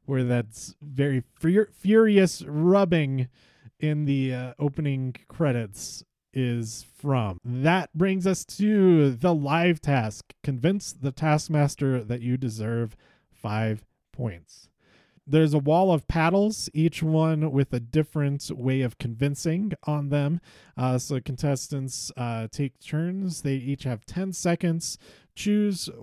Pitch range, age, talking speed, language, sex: 125-160 Hz, 30-49, 125 wpm, English, male